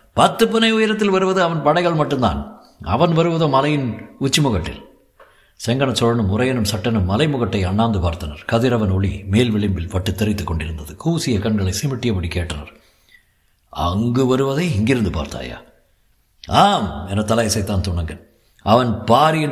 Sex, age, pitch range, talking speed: male, 60-79, 95-145 Hz, 120 wpm